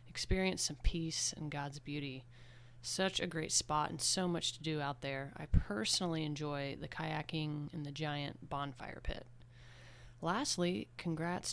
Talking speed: 150 wpm